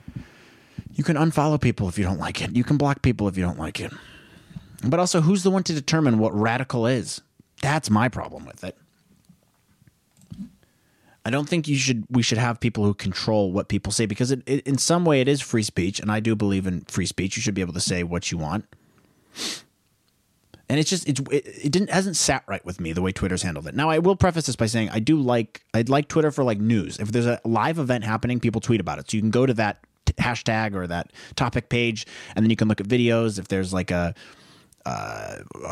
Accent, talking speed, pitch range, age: American, 235 wpm, 95-130 Hz, 30-49